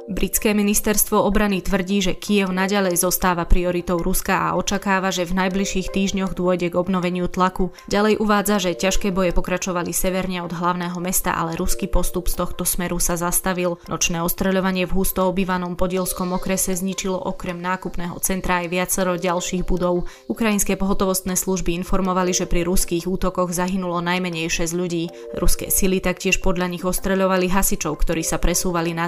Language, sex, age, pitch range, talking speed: Slovak, female, 20-39, 175-190 Hz, 155 wpm